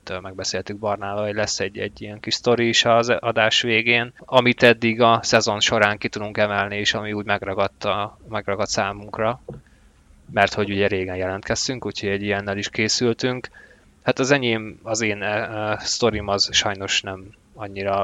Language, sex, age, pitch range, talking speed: Hungarian, male, 20-39, 100-115 Hz, 165 wpm